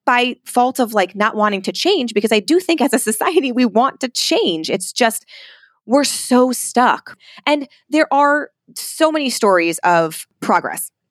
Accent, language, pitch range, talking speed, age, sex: American, English, 170-225 Hz, 175 wpm, 20-39, female